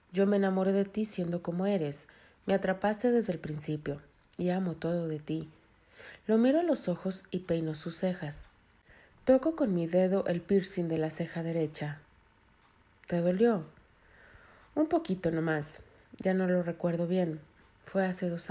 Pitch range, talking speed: 155-195 Hz, 160 wpm